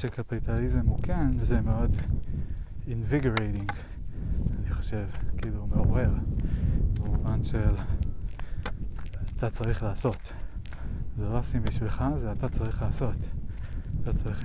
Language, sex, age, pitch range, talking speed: Hebrew, male, 20-39, 95-115 Hz, 110 wpm